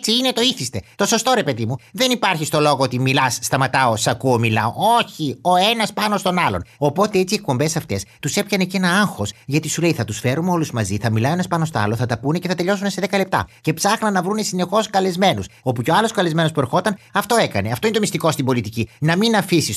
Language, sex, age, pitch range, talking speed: Greek, male, 30-49, 115-195 Hz, 245 wpm